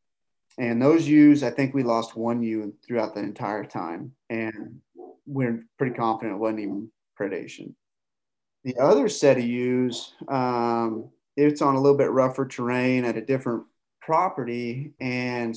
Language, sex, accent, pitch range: English, male, American, 115-135 Hz